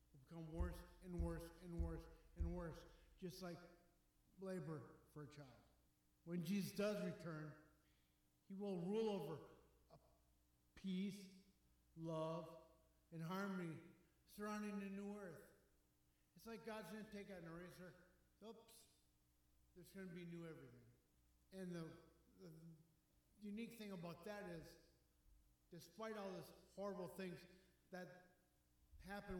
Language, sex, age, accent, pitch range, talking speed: English, male, 50-69, American, 160-195 Hz, 125 wpm